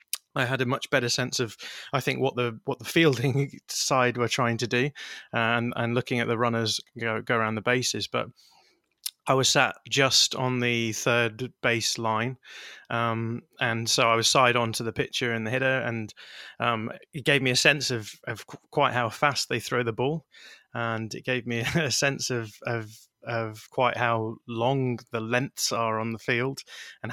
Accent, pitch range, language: British, 115-130 Hz, English